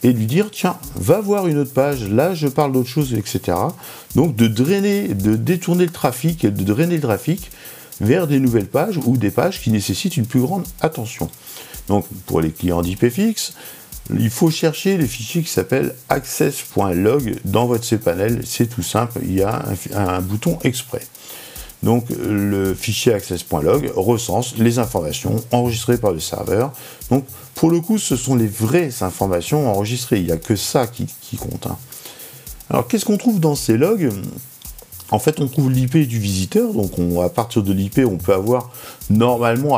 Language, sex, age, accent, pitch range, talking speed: French, male, 50-69, French, 100-145 Hz, 180 wpm